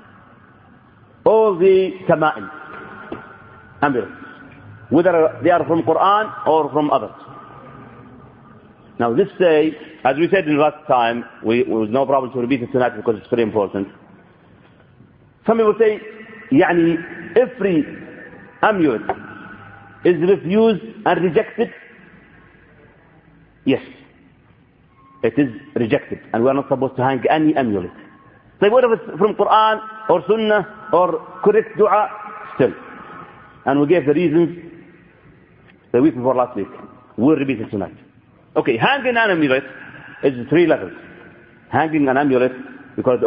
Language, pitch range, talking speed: English, 135-215 Hz, 125 wpm